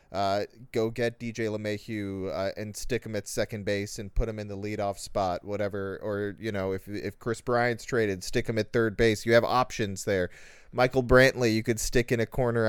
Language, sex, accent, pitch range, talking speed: English, male, American, 105-125 Hz, 215 wpm